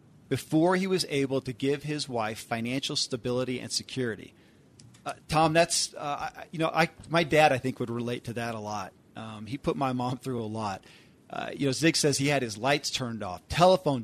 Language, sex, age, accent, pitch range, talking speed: English, male, 40-59, American, 120-160 Hz, 210 wpm